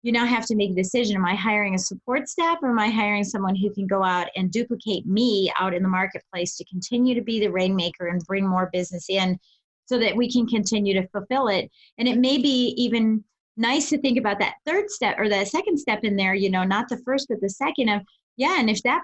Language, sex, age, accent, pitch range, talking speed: English, female, 30-49, American, 190-235 Hz, 250 wpm